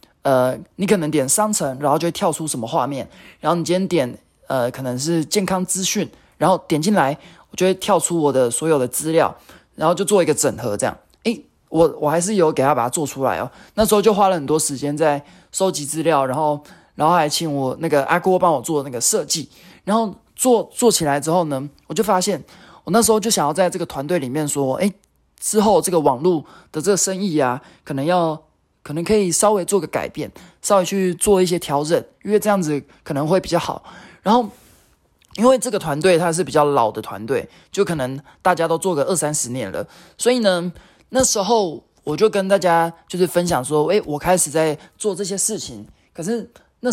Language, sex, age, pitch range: Chinese, male, 20-39, 150-200 Hz